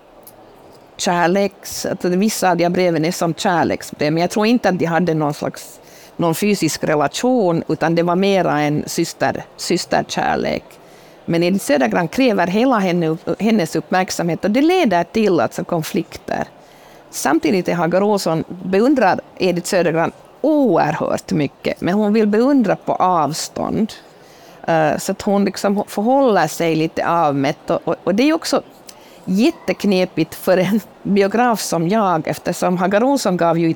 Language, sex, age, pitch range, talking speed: Swedish, female, 50-69, 160-200 Hz, 150 wpm